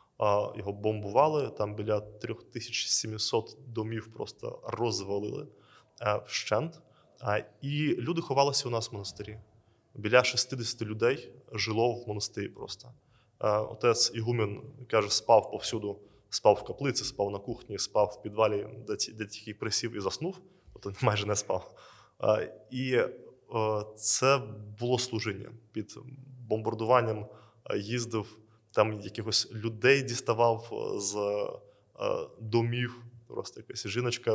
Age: 20-39